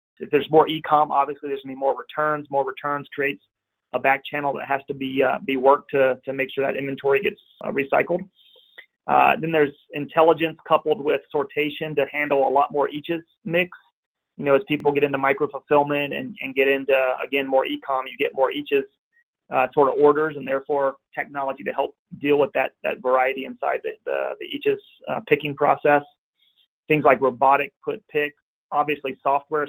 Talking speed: 190 wpm